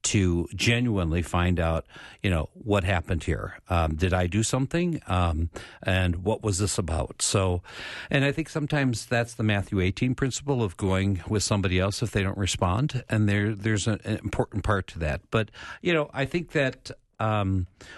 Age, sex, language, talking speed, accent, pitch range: 60-79, male, English, 180 wpm, American, 95-120 Hz